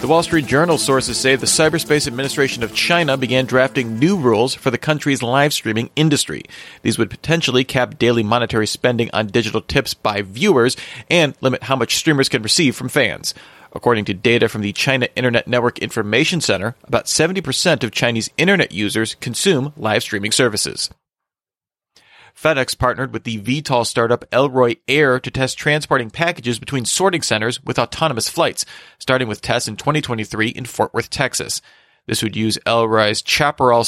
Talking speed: 165 wpm